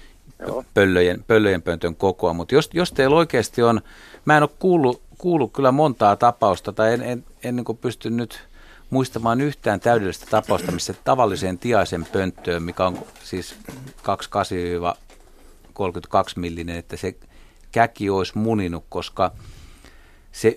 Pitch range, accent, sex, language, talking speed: 90-115 Hz, native, male, Finnish, 135 wpm